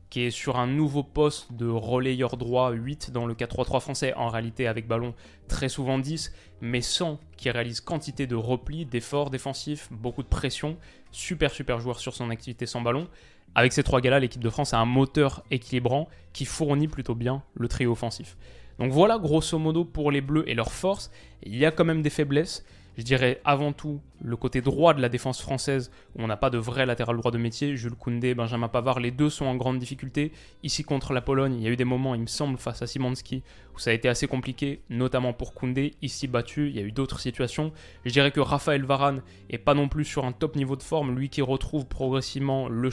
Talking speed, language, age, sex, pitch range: 225 wpm, French, 20-39, male, 125-150 Hz